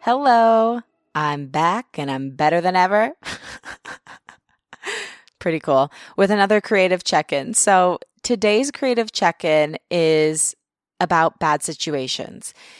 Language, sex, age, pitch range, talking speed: English, female, 20-39, 155-215 Hz, 105 wpm